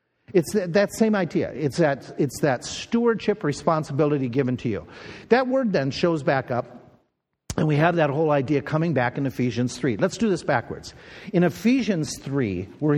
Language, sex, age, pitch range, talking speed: English, male, 50-69, 130-175 Hz, 175 wpm